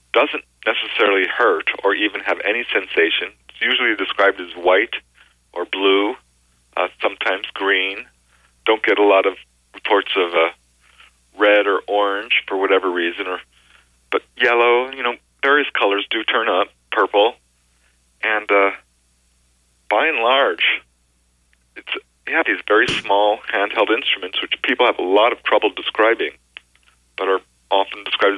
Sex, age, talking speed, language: male, 40-59, 135 wpm, English